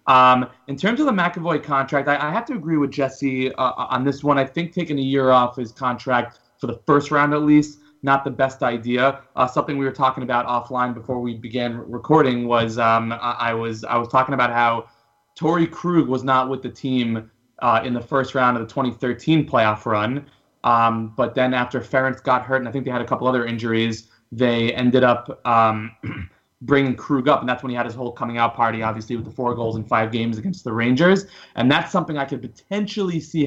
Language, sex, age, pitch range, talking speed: English, male, 20-39, 115-135 Hz, 225 wpm